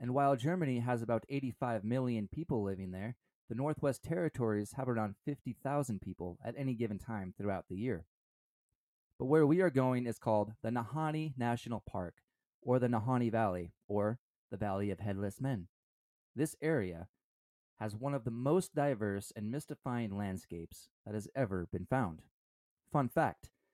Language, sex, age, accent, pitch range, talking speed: English, male, 20-39, American, 100-135 Hz, 160 wpm